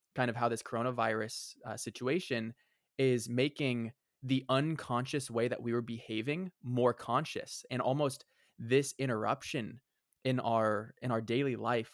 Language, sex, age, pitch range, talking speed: English, male, 20-39, 115-130 Hz, 140 wpm